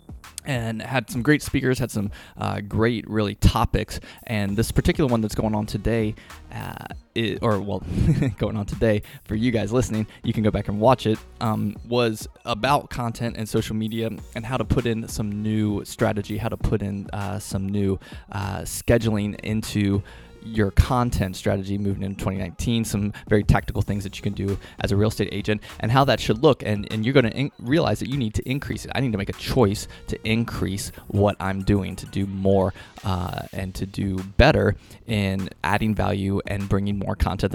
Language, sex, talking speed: English, male, 200 wpm